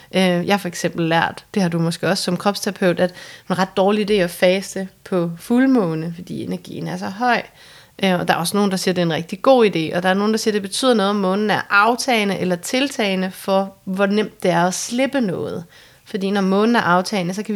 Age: 30-49